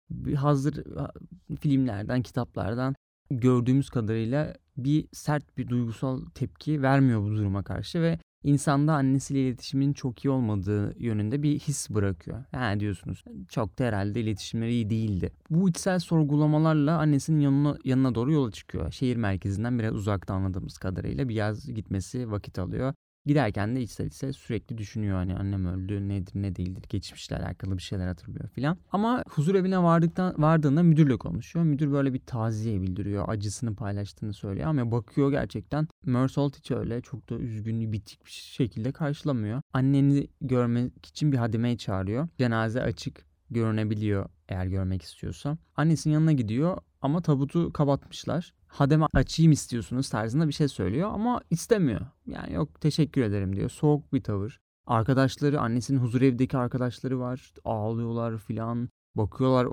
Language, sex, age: Turkish, male, 30-49